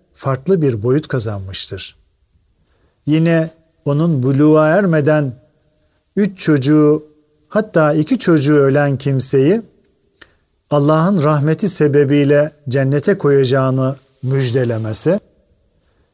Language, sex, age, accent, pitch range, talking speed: Turkish, male, 50-69, native, 130-165 Hz, 80 wpm